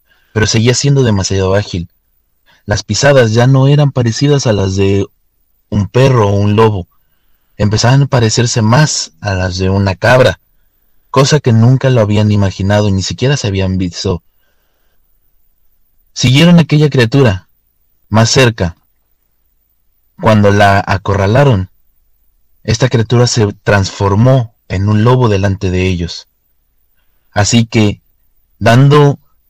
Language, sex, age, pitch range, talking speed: Spanish, male, 30-49, 90-120 Hz, 125 wpm